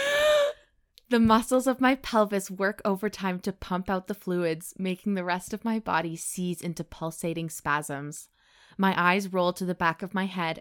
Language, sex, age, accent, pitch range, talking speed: English, female, 20-39, American, 165-195 Hz, 180 wpm